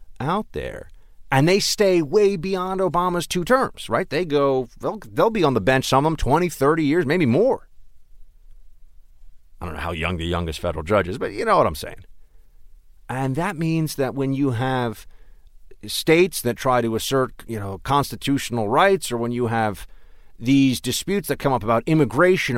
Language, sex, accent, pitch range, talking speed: English, male, American, 100-165 Hz, 185 wpm